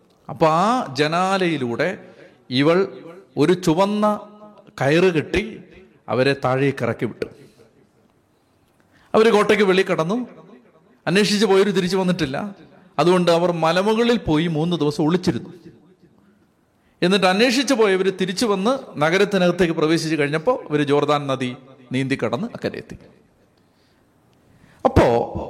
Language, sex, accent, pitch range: Malayalam, male, native, 140-195 Hz